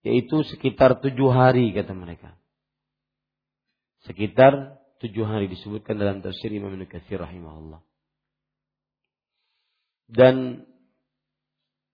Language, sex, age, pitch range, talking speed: Malay, male, 50-69, 105-150 Hz, 80 wpm